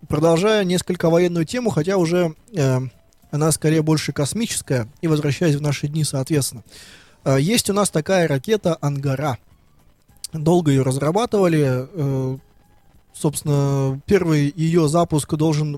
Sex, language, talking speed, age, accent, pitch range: male, Russian, 120 wpm, 20-39, native, 135-165 Hz